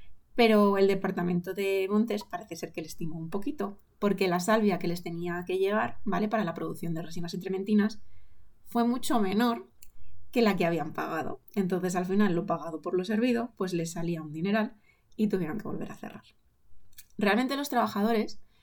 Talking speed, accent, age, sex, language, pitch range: 185 wpm, Spanish, 20-39, female, Spanish, 170-215 Hz